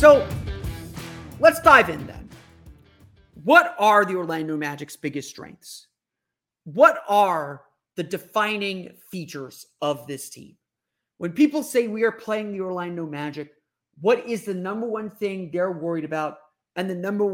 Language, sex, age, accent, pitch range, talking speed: English, male, 30-49, American, 155-205 Hz, 140 wpm